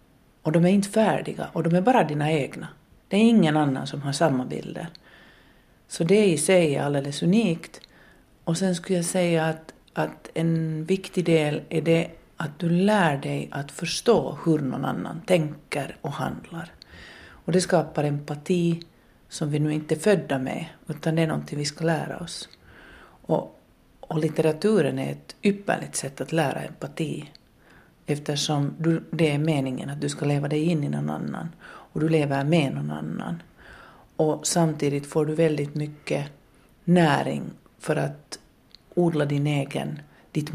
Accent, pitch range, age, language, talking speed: native, 140-165 Hz, 40-59, Swedish, 165 wpm